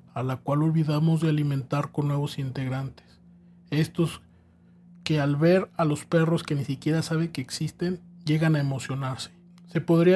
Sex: male